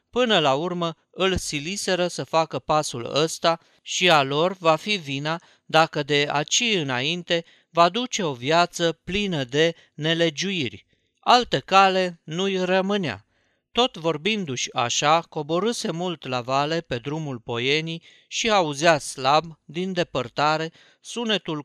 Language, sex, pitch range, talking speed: Romanian, male, 140-180 Hz, 130 wpm